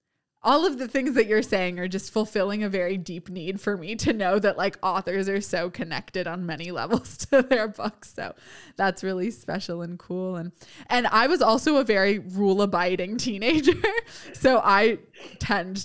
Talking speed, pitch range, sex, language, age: 185 wpm, 175-205 Hz, female, English, 20-39